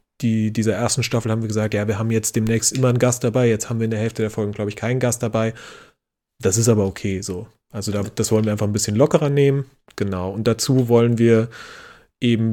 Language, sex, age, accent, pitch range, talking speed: German, male, 30-49, German, 110-125 Hz, 230 wpm